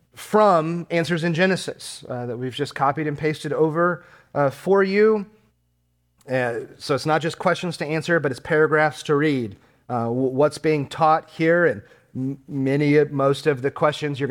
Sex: male